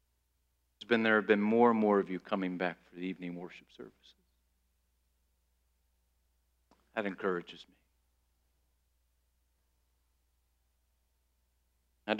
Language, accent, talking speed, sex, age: English, American, 100 wpm, male, 40-59